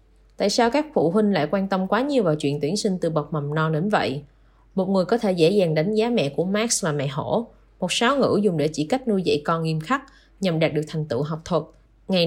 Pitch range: 155-210 Hz